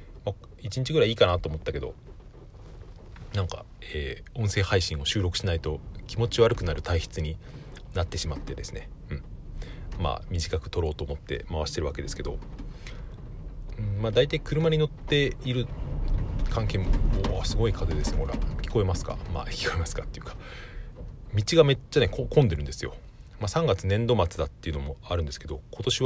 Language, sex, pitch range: Japanese, male, 85-120 Hz